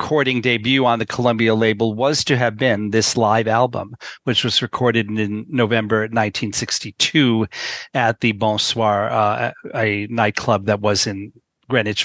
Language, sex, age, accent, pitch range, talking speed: English, male, 40-59, American, 110-130 Hz, 145 wpm